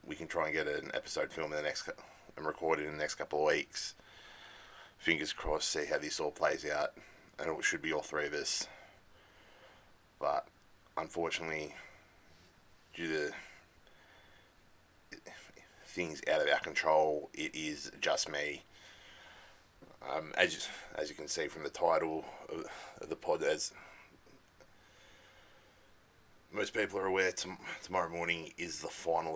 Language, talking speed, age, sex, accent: English, 145 wpm, 30-49, male, Australian